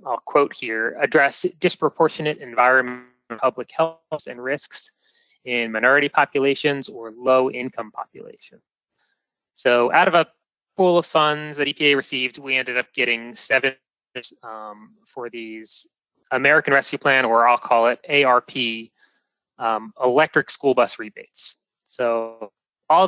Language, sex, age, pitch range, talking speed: English, male, 30-49, 120-155 Hz, 130 wpm